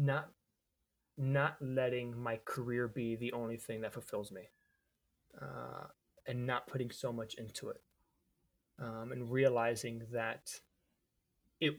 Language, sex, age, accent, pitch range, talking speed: English, male, 20-39, American, 115-135 Hz, 125 wpm